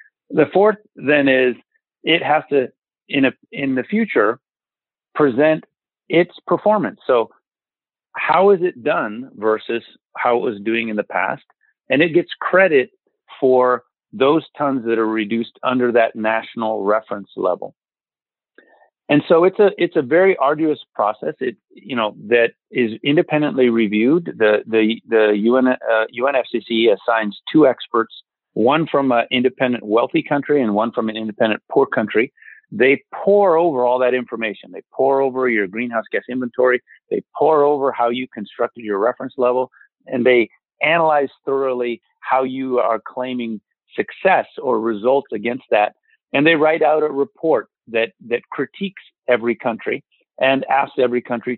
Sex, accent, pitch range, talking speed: male, American, 115-155 Hz, 150 wpm